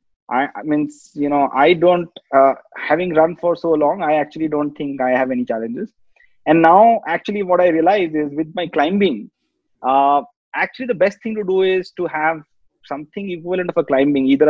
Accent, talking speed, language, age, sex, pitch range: Indian, 190 wpm, English, 30-49, male, 140-180 Hz